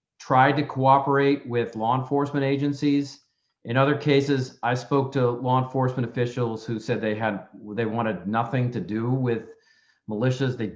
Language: English